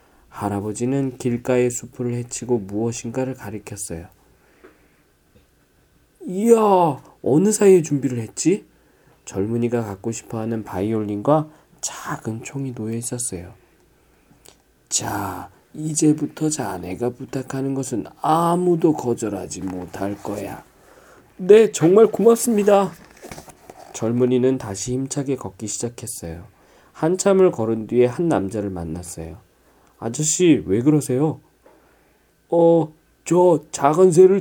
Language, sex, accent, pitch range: Korean, male, native, 110-170 Hz